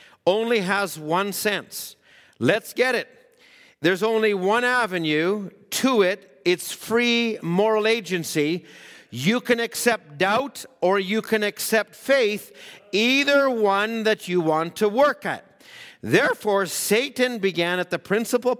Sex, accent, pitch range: male, American, 180-235 Hz